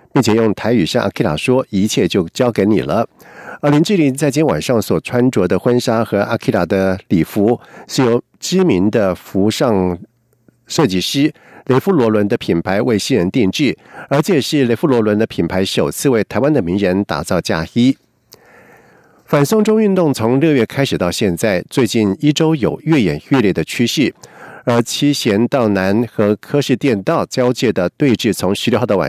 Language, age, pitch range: German, 50-69, 110-145 Hz